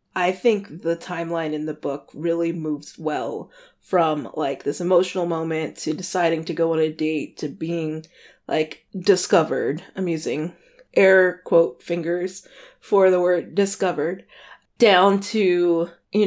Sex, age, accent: female, 20-39, American